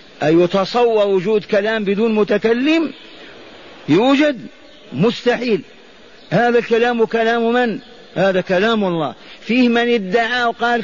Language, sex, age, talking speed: Arabic, male, 50-69, 105 wpm